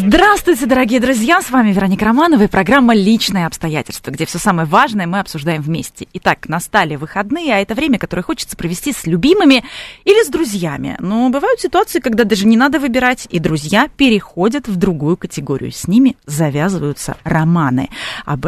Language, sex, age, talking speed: Russian, female, 30-49, 165 wpm